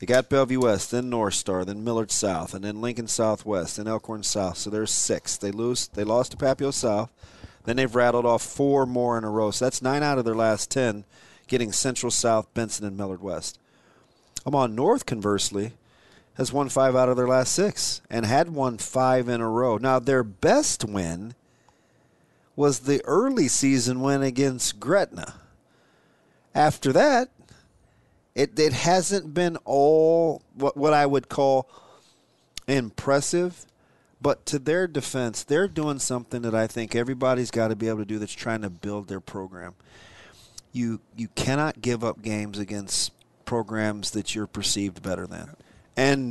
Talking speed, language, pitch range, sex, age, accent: 170 wpm, English, 105-130 Hz, male, 40-59, American